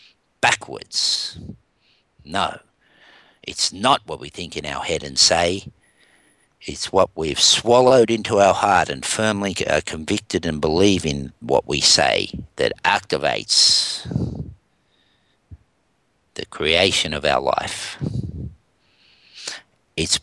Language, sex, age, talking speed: English, male, 50-69, 110 wpm